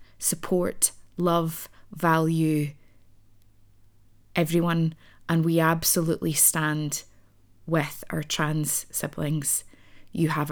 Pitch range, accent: 135-175 Hz, British